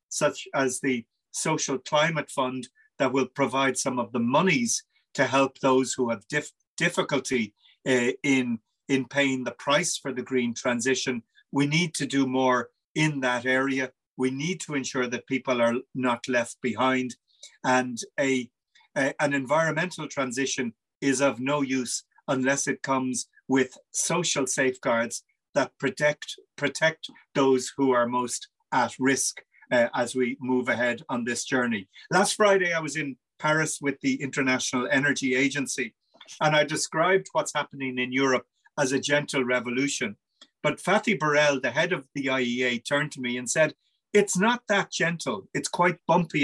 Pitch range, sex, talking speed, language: 125-150 Hz, male, 155 wpm, English